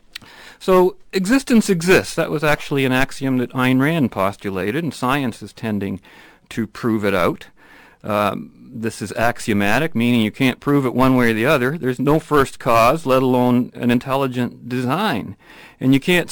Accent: American